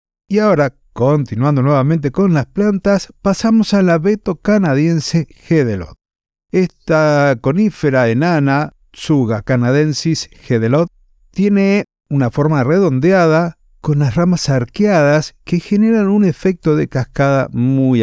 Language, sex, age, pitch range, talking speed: Spanish, male, 50-69, 120-175 Hz, 115 wpm